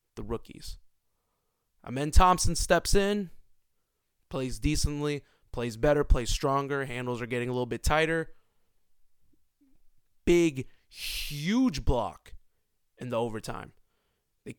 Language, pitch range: English, 125-160 Hz